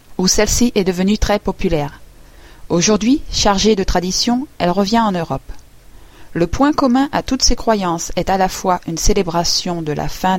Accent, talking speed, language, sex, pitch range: French, 175 wpm, French, female, 165-210 Hz